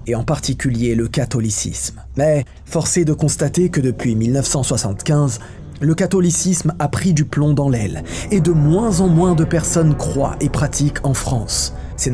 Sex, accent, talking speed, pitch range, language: male, French, 165 wpm, 130-165 Hz, French